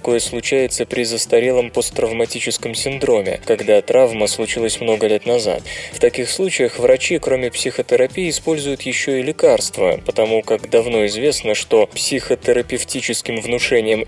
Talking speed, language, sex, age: 125 wpm, Russian, male, 20-39